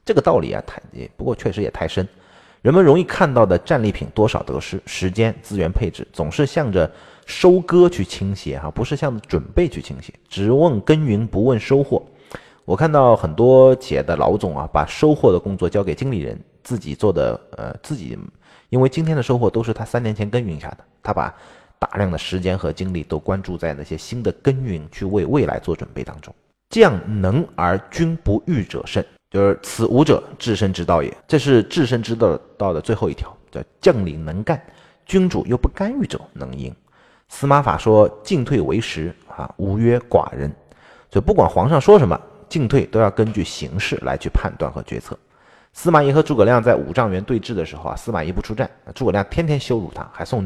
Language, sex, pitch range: Chinese, male, 95-135 Hz